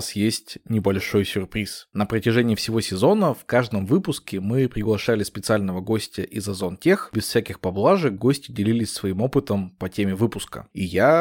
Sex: male